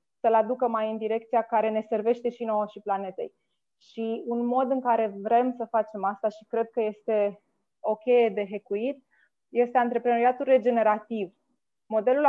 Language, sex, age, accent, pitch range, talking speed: Romanian, female, 20-39, native, 220-260 Hz, 155 wpm